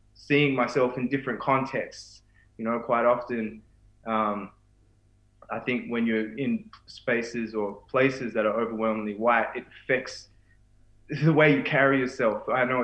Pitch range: 110-130 Hz